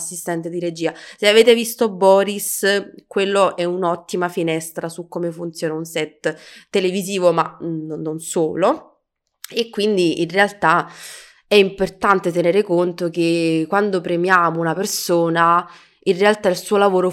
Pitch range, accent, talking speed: 155-195 Hz, native, 135 wpm